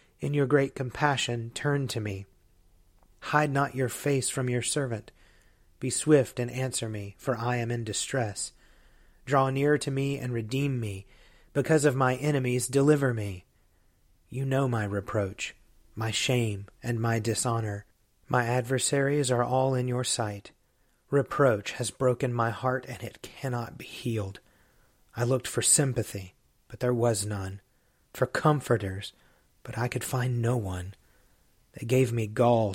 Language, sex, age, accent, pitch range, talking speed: English, male, 30-49, American, 110-130 Hz, 150 wpm